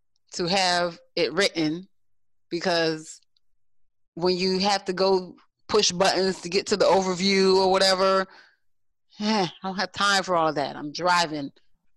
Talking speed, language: 150 wpm, English